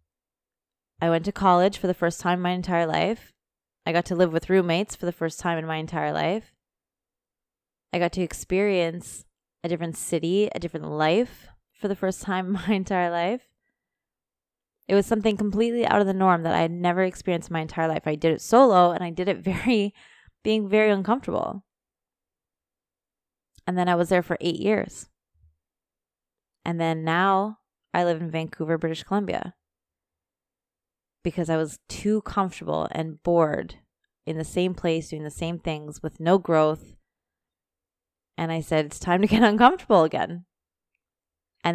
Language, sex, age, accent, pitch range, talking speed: English, female, 20-39, American, 160-195 Hz, 170 wpm